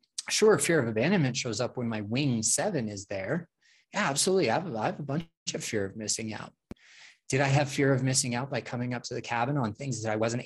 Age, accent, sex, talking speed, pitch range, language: 20-39, American, male, 240 wpm, 110-140 Hz, English